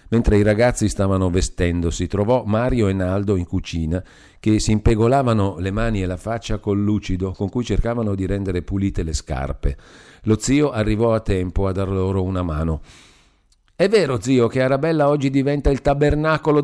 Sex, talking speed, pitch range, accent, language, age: male, 175 wpm, 90-115 Hz, native, Italian, 50-69